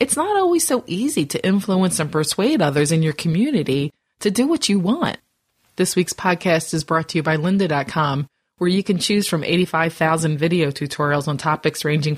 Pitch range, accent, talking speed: 150-185 Hz, American, 185 wpm